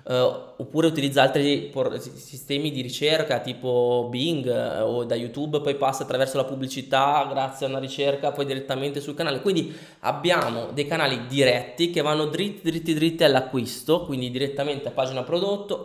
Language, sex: Italian, male